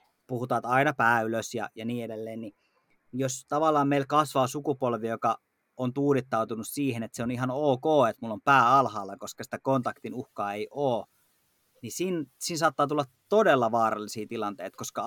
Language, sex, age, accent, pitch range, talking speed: Finnish, male, 30-49, native, 115-145 Hz, 170 wpm